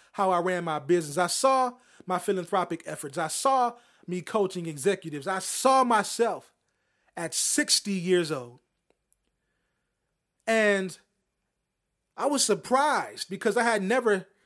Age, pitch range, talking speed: 30-49, 170-220 Hz, 125 wpm